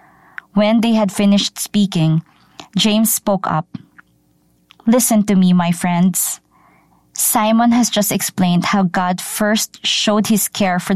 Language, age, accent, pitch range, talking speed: English, 20-39, Filipino, 175-215 Hz, 130 wpm